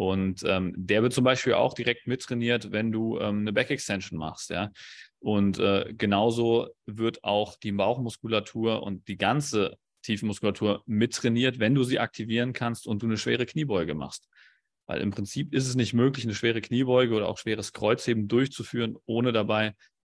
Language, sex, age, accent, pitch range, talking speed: German, male, 30-49, German, 95-120 Hz, 165 wpm